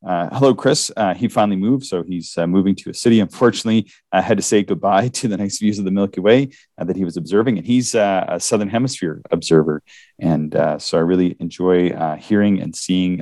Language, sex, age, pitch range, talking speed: English, male, 30-49, 85-110 Hz, 225 wpm